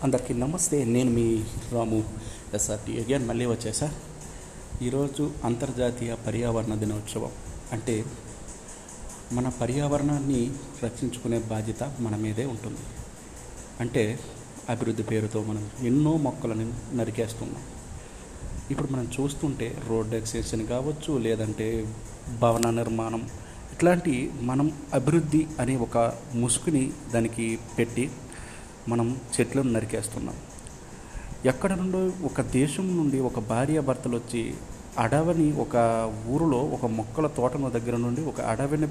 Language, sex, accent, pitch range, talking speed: Telugu, male, native, 115-135 Hz, 105 wpm